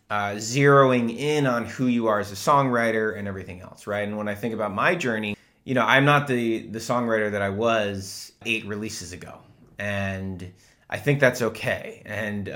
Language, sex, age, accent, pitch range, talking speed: English, male, 20-39, American, 100-125 Hz, 190 wpm